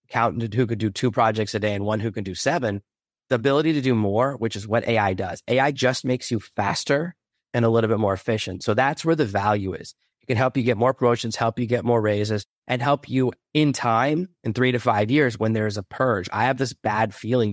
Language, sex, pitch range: English, male, 105-125 Hz